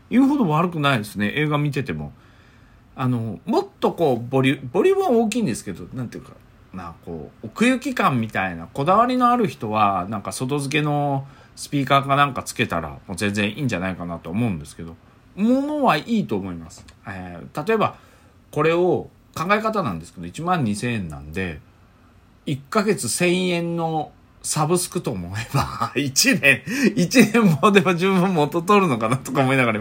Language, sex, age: Japanese, male, 40-59